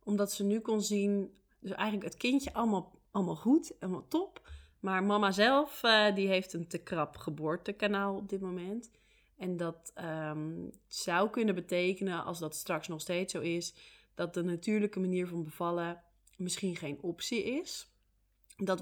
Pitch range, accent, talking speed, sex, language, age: 170-200 Hz, Dutch, 165 wpm, female, Dutch, 20-39